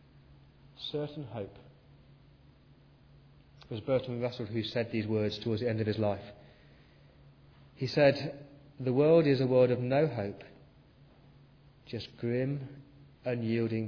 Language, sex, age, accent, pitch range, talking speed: English, male, 30-49, British, 120-150 Hz, 125 wpm